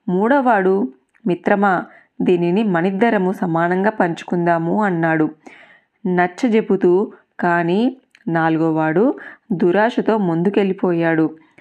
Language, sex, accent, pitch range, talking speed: Telugu, female, native, 175-235 Hz, 60 wpm